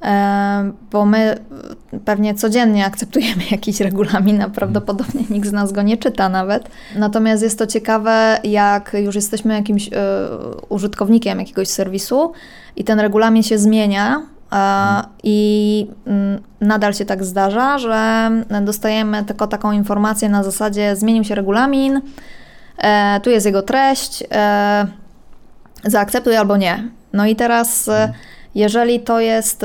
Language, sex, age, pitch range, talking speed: Polish, female, 20-39, 205-230 Hz, 120 wpm